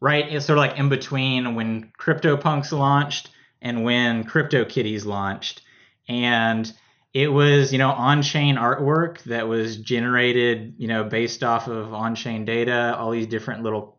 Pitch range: 115-140 Hz